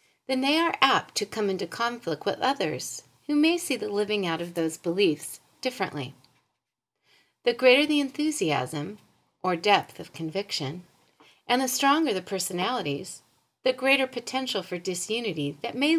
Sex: female